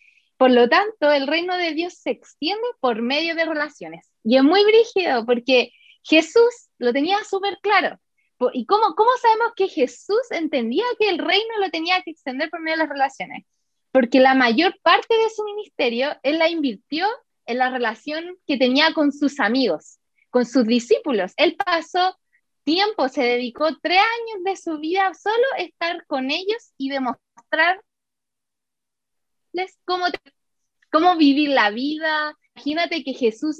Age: 20-39